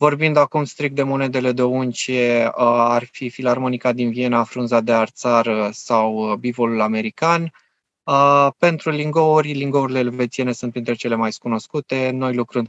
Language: Romanian